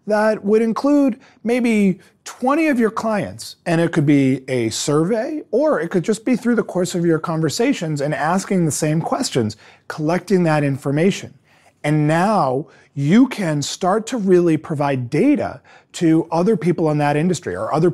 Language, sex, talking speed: English, male, 165 wpm